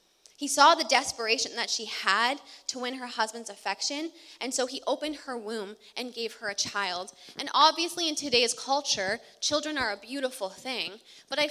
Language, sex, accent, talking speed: English, female, American, 180 wpm